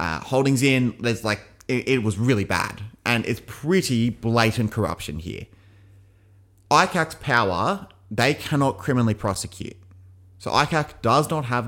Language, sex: English, male